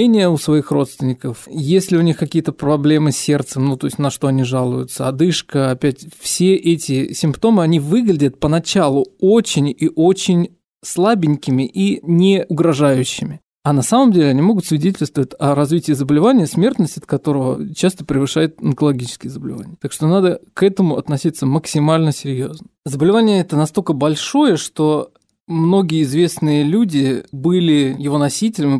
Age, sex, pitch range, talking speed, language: 20-39, male, 140-170 Hz, 140 wpm, Russian